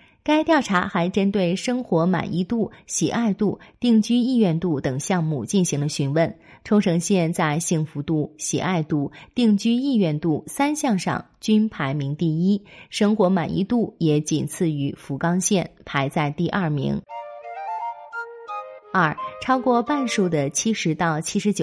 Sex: female